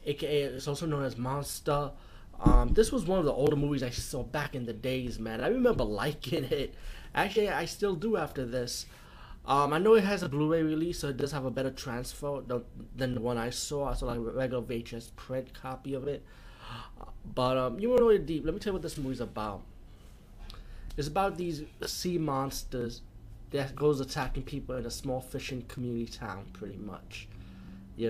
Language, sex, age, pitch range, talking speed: English, male, 20-39, 115-145 Hz, 205 wpm